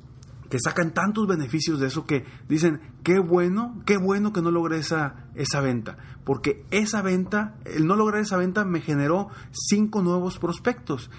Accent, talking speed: Mexican, 165 wpm